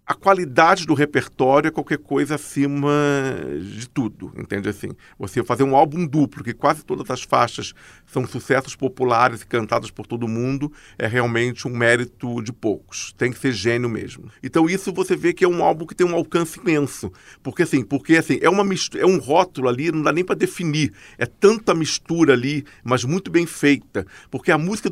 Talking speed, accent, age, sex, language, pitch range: 195 wpm, Brazilian, 50-69, male, Portuguese, 125-170 Hz